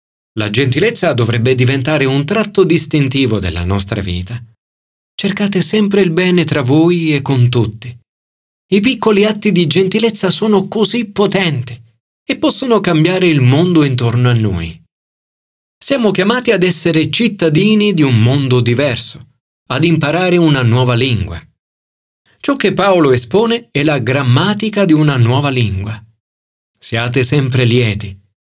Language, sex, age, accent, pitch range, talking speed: Italian, male, 40-59, native, 120-180 Hz, 135 wpm